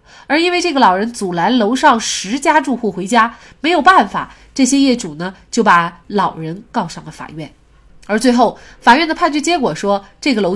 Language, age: Chinese, 20-39